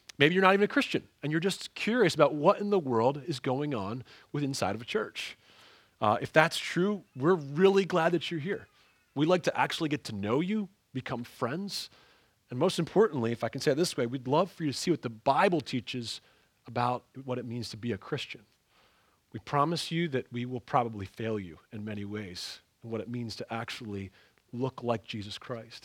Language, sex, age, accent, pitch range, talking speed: English, male, 30-49, American, 120-170 Hz, 215 wpm